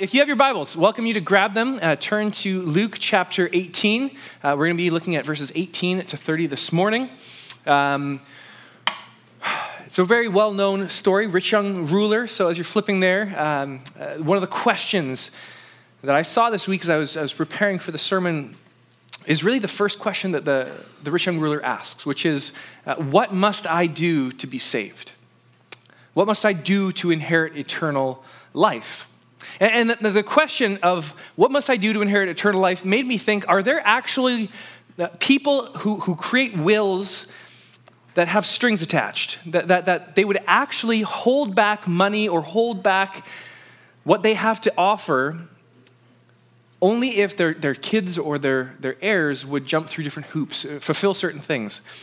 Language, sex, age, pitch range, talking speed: English, male, 20-39, 155-210 Hz, 175 wpm